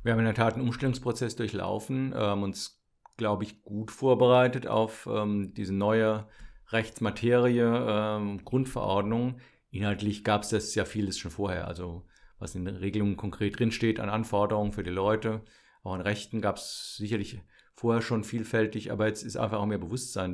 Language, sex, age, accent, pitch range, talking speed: German, male, 50-69, German, 100-115 Hz, 165 wpm